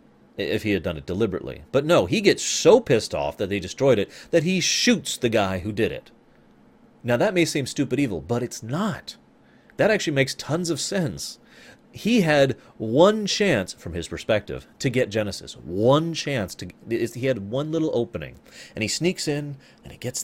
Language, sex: English, male